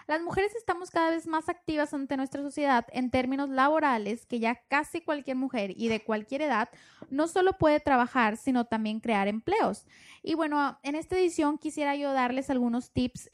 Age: 10-29